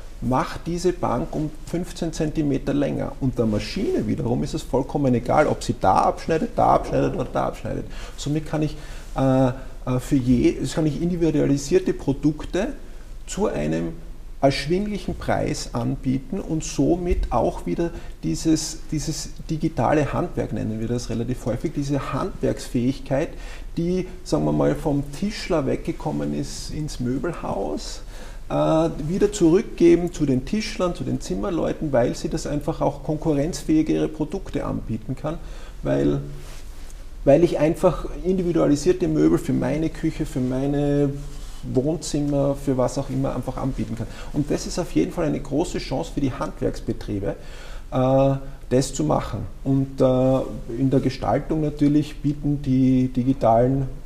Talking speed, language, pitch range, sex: 135 wpm, German, 125-160 Hz, male